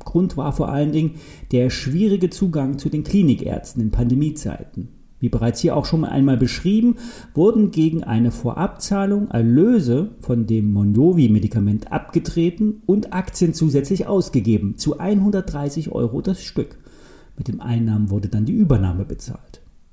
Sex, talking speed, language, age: male, 140 wpm, German, 40-59